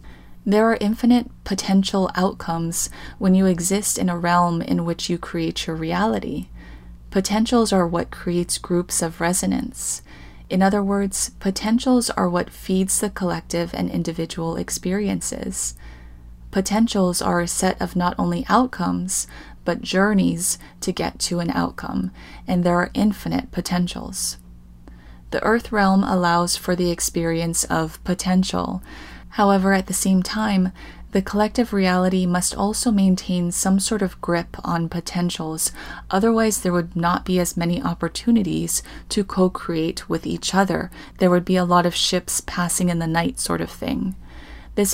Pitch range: 165-195 Hz